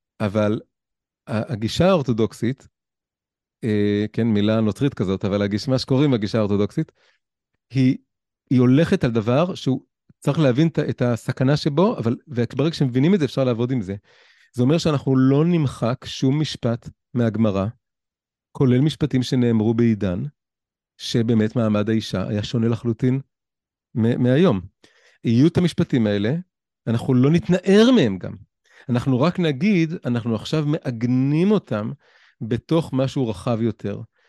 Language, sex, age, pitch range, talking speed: Hebrew, male, 30-49, 110-145 Hz, 110 wpm